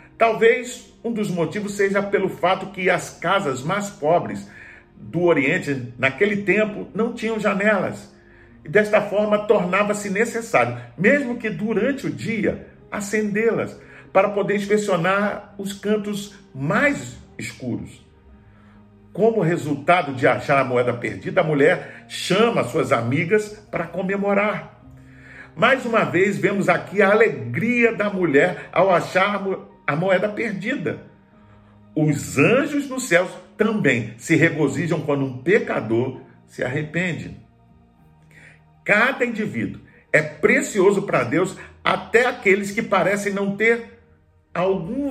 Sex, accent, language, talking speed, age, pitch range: male, Brazilian, Portuguese, 120 wpm, 50-69, 150-215 Hz